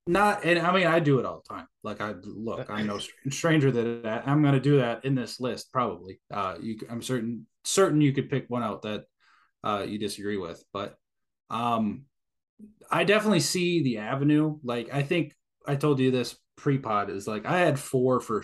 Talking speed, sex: 200 wpm, male